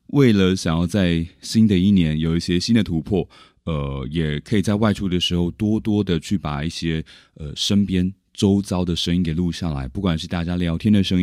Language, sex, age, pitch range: Chinese, male, 20-39, 80-95 Hz